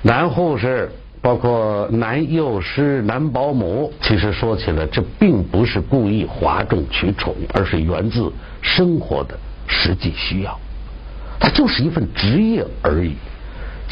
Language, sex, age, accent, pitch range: Chinese, male, 60-79, native, 80-100 Hz